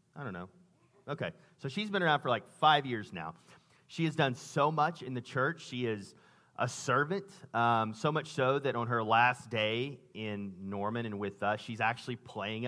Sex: male